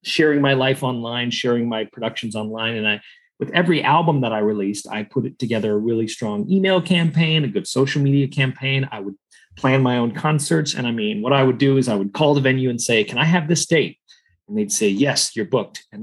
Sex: male